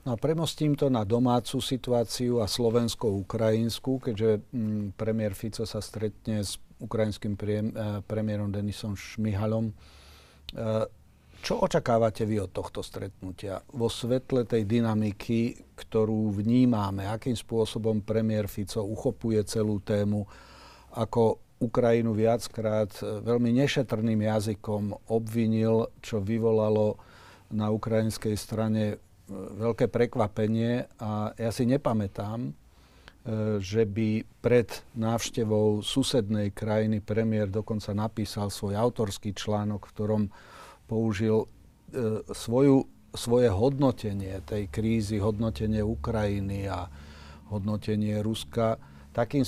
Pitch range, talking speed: 105-115 Hz, 105 wpm